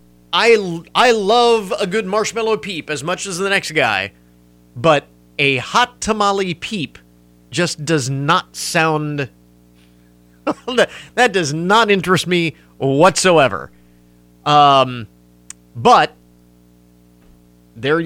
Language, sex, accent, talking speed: English, male, American, 105 wpm